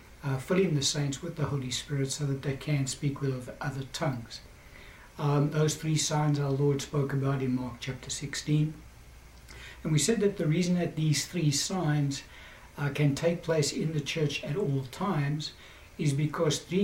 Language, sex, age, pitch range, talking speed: English, male, 60-79, 135-155 Hz, 180 wpm